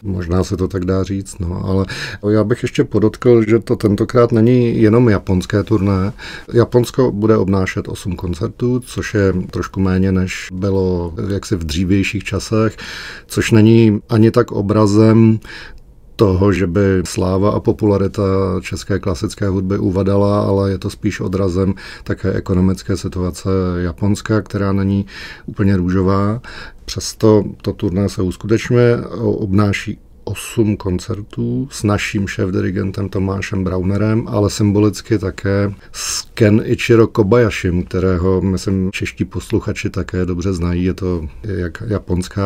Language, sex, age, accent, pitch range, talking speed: Czech, male, 40-59, native, 95-110 Hz, 135 wpm